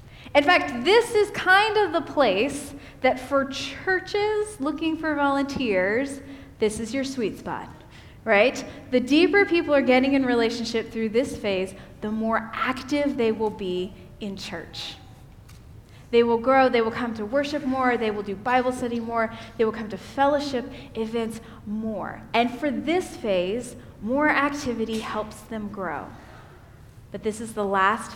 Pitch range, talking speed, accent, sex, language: 210-280 Hz, 160 wpm, American, female, English